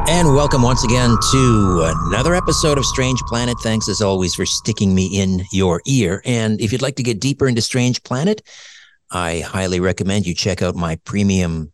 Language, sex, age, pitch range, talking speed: English, male, 50-69, 95-120 Hz, 190 wpm